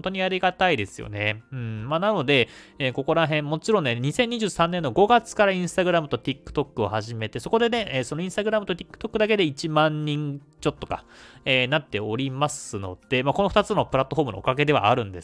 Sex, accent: male, native